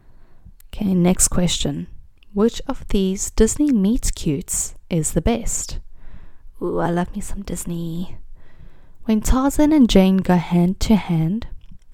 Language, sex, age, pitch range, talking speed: English, female, 20-39, 155-210 Hz, 120 wpm